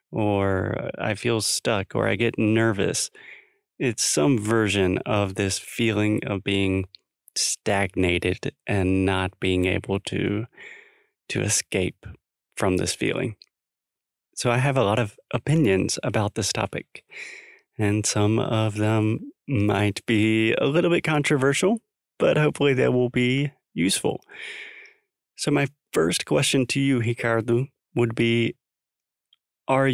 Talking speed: 125 wpm